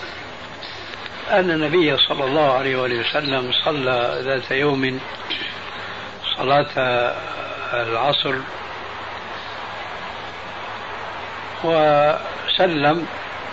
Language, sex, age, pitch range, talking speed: Arabic, male, 60-79, 125-155 Hz, 55 wpm